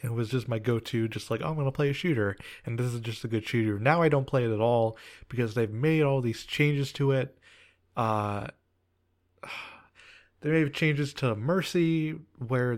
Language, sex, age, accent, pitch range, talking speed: English, male, 20-39, American, 110-130 Hz, 200 wpm